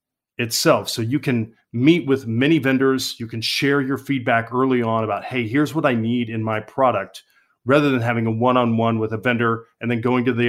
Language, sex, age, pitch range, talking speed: English, male, 40-59, 115-135 Hz, 225 wpm